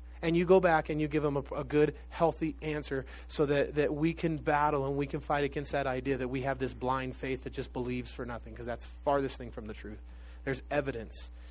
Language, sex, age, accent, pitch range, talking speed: English, male, 30-49, American, 115-165 Hz, 240 wpm